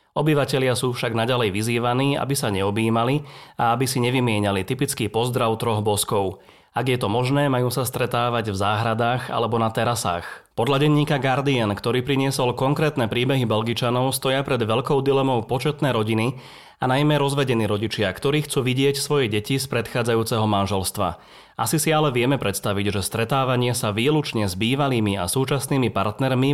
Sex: male